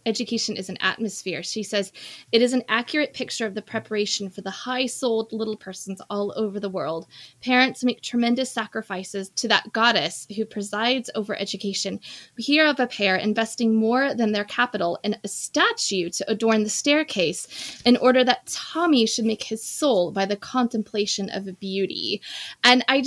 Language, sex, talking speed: English, female, 170 wpm